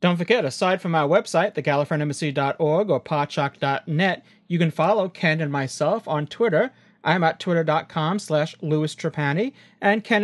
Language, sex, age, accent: English, male, 30-49, American